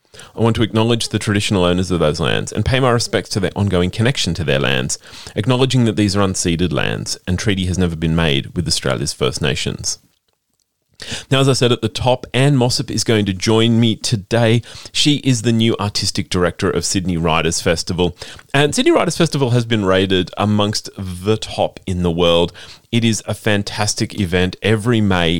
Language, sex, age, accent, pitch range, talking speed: English, male, 30-49, Australian, 95-130 Hz, 195 wpm